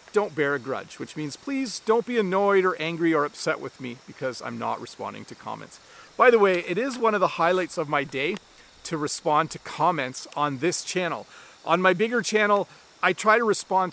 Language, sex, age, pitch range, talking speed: English, male, 40-59, 145-195 Hz, 210 wpm